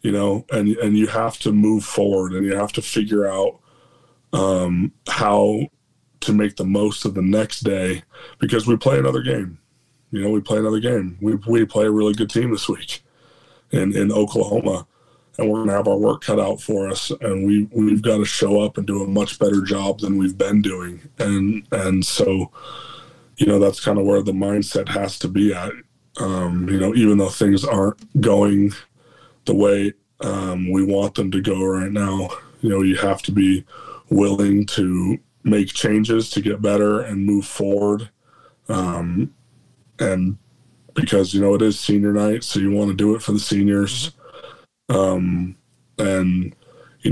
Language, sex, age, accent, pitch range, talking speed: English, male, 20-39, American, 95-105 Hz, 185 wpm